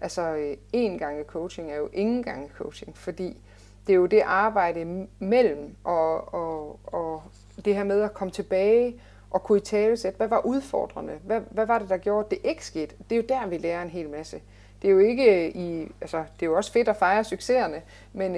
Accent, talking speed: native, 210 wpm